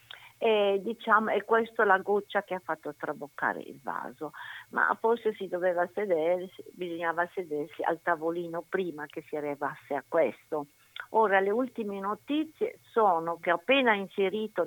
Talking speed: 145 wpm